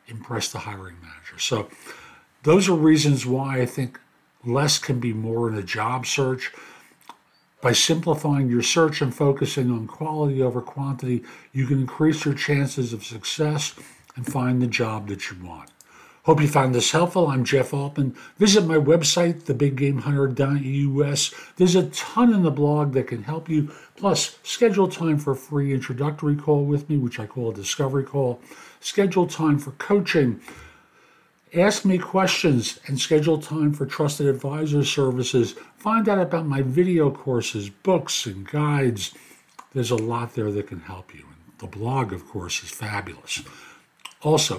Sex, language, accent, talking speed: male, English, American, 160 wpm